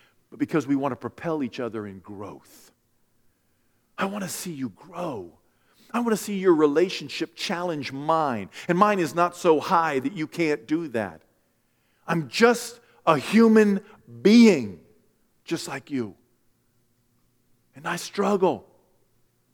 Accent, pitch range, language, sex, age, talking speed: American, 120-185 Hz, English, male, 50-69, 140 wpm